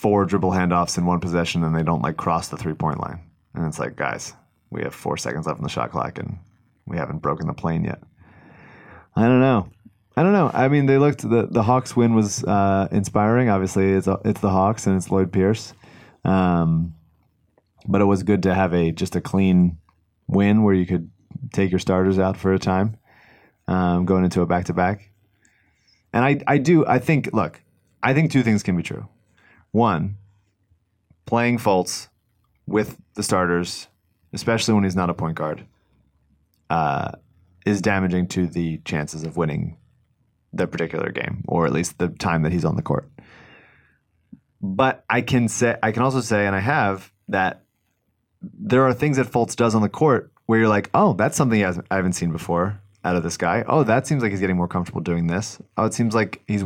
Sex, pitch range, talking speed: male, 90-110 Hz, 200 wpm